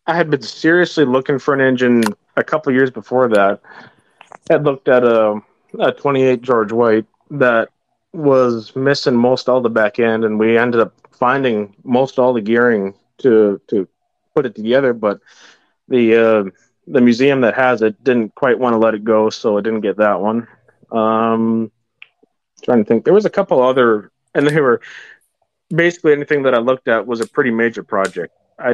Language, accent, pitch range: English, American, 110-130 Hz